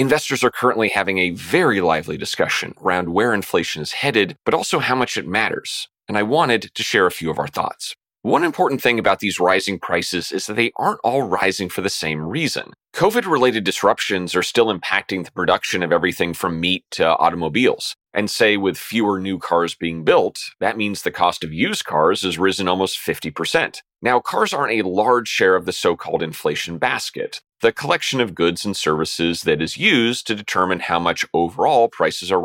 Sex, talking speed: male, 195 wpm